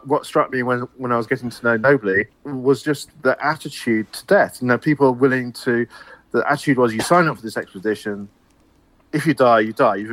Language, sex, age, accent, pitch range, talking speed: English, male, 40-59, British, 110-135 Hz, 225 wpm